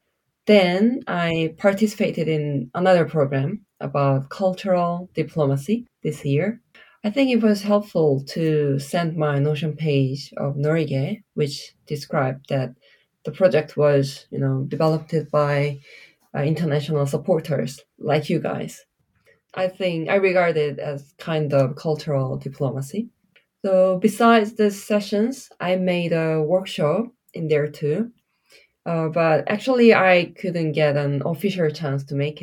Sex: female